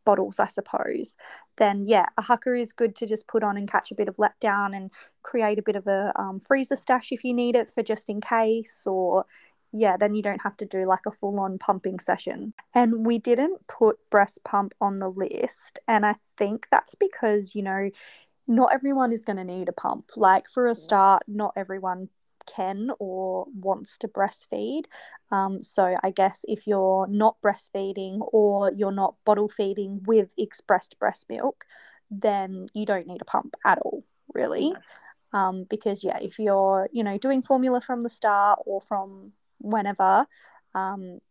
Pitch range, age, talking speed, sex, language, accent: 195-230 Hz, 20-39, 185 wpm, female, English, Australian